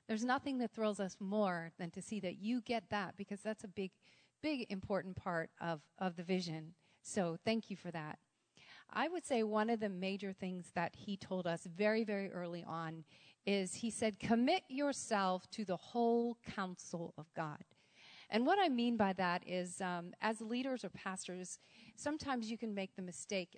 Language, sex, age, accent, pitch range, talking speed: English, female, 40-59, American, 185-235 Hz, 190 wpm